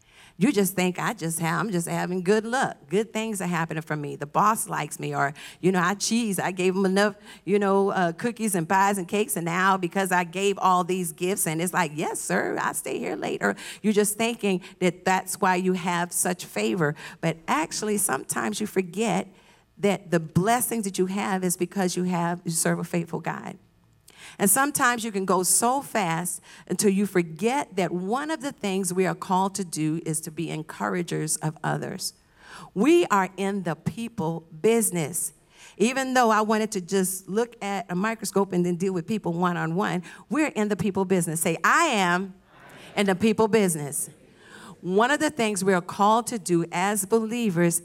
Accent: American